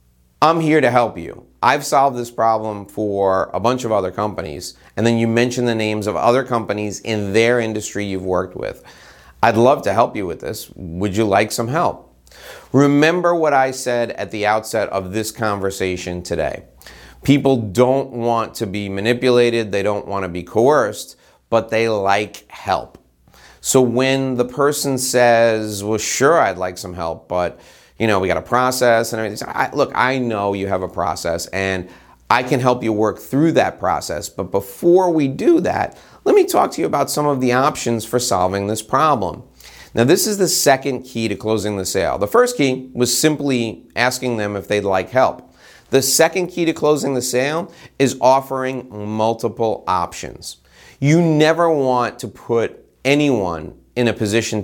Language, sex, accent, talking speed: English, male, American, 180 wpm